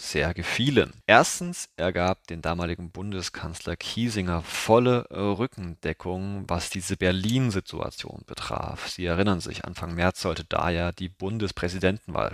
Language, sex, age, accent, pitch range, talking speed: German, male, 30-49, German, 85-105 Hz, 115 wpm